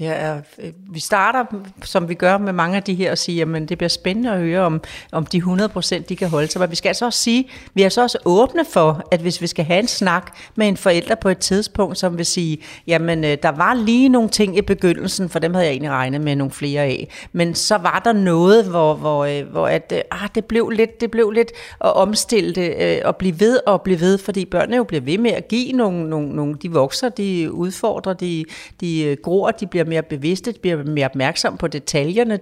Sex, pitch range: female, 165-205 Hz